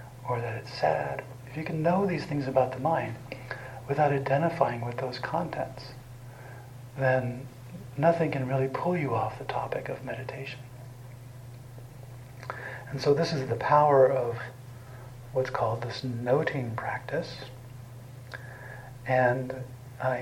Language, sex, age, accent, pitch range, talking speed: English, male, 50-69, American, 125-135 Hz, 130 wpm